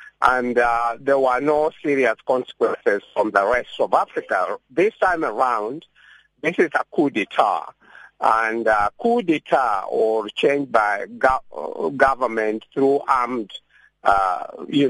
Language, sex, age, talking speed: English, male, 50-69, 135 wpm